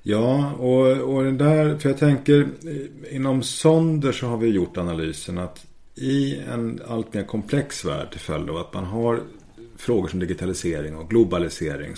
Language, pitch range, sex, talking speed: Swedish, 95-130 Hz, male, 165 wpm